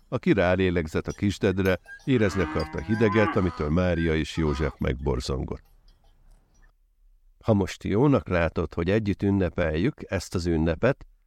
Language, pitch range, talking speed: Hungarian, 80-105 Hz, 115 wpm